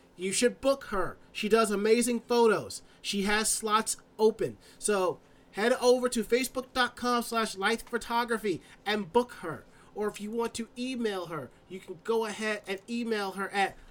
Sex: male